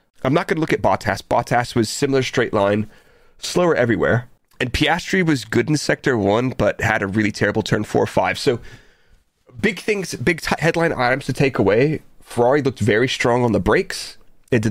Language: English